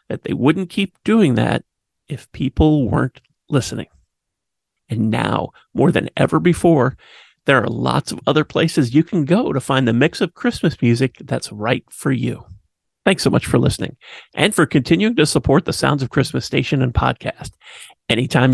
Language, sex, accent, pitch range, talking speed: English, male, American, 125-160 Hz, 175 wpm